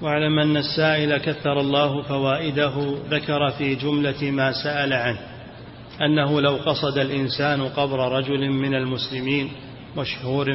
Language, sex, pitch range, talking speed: Arabic, male, 130-140 Hz, 120 wpm